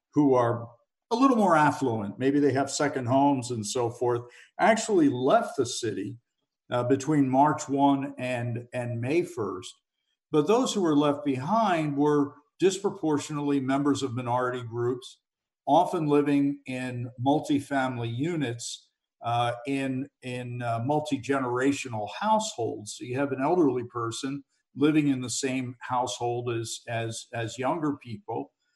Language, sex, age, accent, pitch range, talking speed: English, male, 50-69, American, 120-145 Hz, 135 wpm